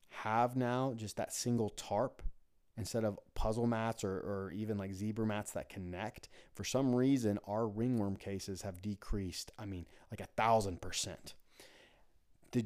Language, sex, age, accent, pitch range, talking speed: English, male, 30-49, American, 100-120 Hz, 155 wpm